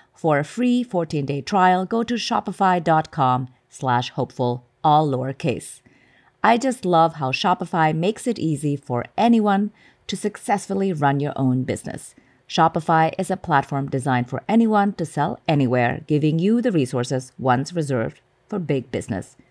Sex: female